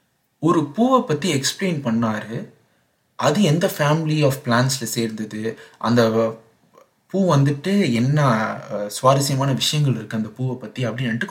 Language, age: Tamil, 30-49